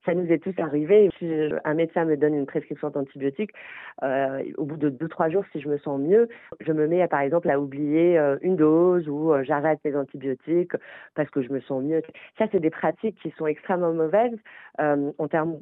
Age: 40-59